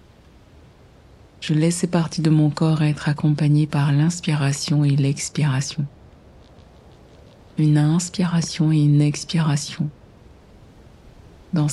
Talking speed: 95 wpm